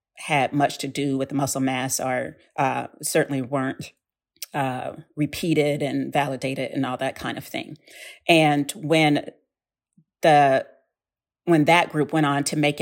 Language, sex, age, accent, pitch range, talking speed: English, female, 40-59, American, 135-155 Hz, 150 wpm